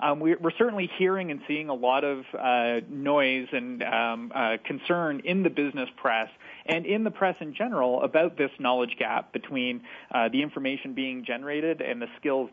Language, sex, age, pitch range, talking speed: English, male, 40-59, 120-150 Hz, 180 wpm